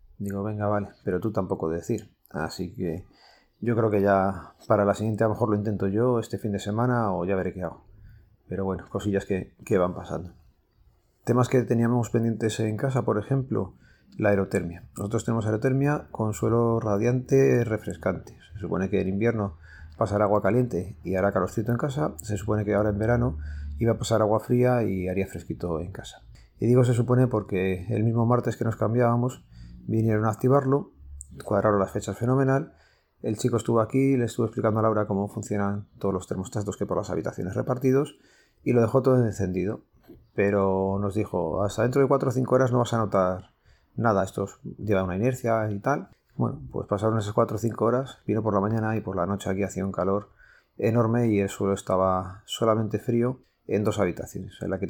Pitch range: 95-115 Hz